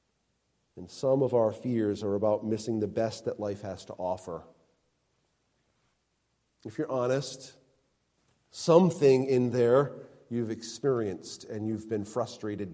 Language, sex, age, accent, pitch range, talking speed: English, male, 40-59, American, 115-150 Hz, 125 wpm